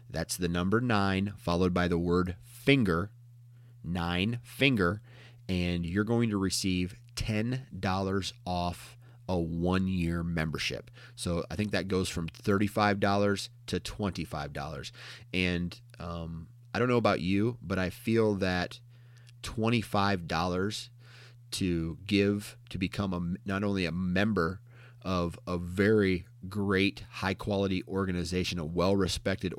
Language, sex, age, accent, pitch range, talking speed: English, male, 30-49, American, 90-110 Hz, 120 wpm